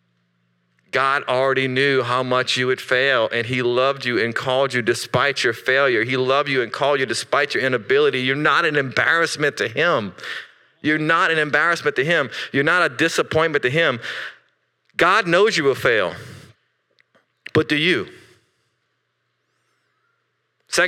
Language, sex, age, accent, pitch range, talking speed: English, male, 40-59, American, 135-175 Hz, 155 wpm